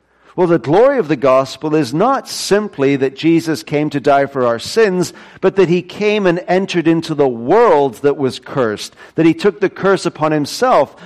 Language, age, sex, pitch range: English, 50-69, male, 125-170 Hz